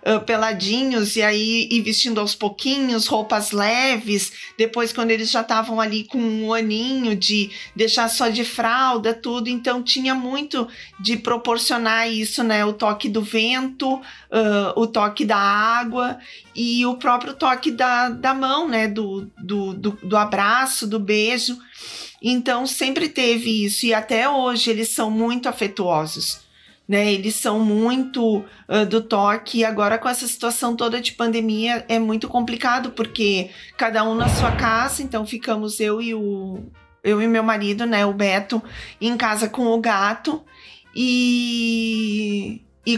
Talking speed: 145 wpm